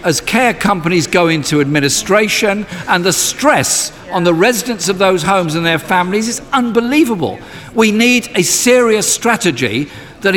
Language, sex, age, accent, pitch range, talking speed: English, male, 50-69, British, 170-225 Hz, 150 wpm